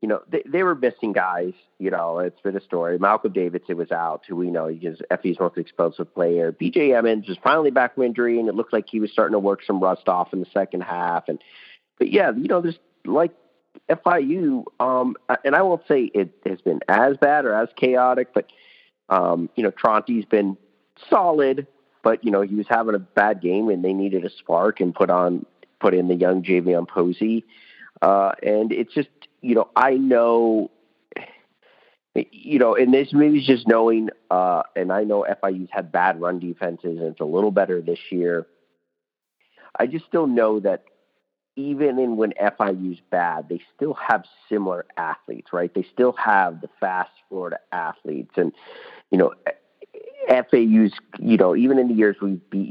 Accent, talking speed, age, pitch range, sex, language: American, 190 wpm, 40-59, 90-130 Hz, male, English